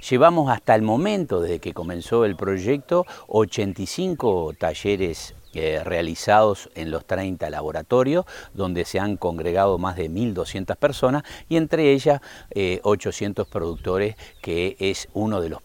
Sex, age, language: male, 50-69, Spanish